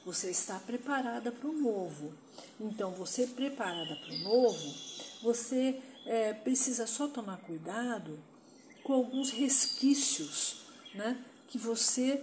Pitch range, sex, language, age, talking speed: 190-270 Hz, female, Portuguese, 50-69, 105 wpm